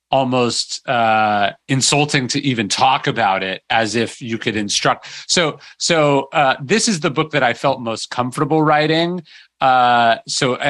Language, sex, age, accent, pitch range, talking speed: English, male, 30-49, American, 115-145 Hz, 155 wpm